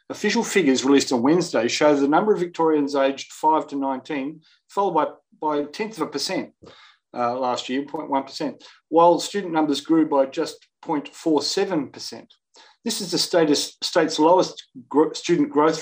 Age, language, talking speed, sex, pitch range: 40-59, English, 155 wpm, male, 135-185 Hz